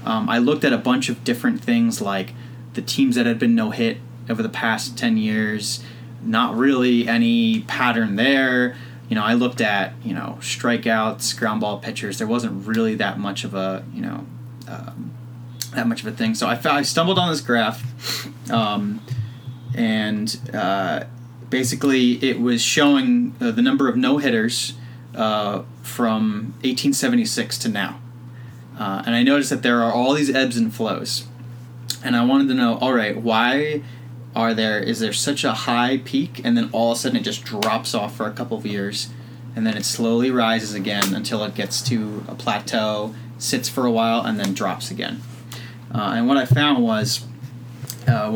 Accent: American